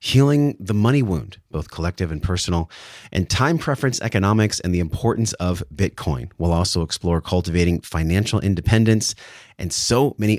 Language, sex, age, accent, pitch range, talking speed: English, male, 30-49, American, 85-110 Hz, 150 wpm